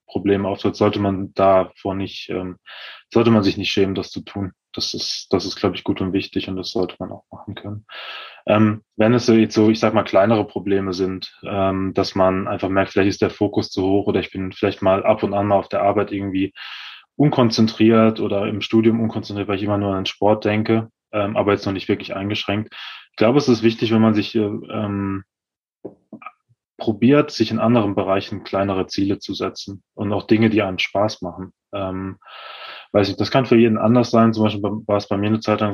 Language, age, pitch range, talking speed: German, 20-39, 95-110 Hz, 215 wpm